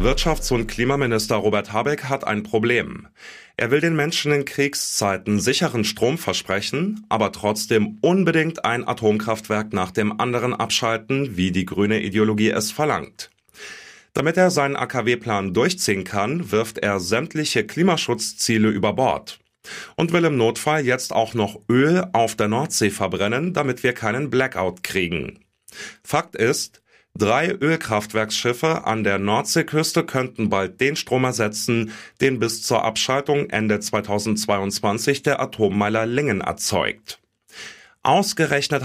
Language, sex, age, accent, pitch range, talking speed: German, male, 30-49, German, 105-145 Hz, 130 wpm